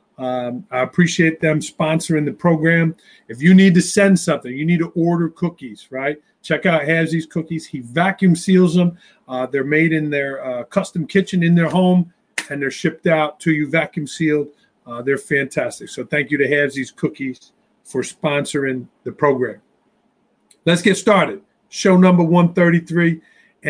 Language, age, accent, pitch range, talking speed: English, 40-59, American, 150-185 Hz, 165 wpm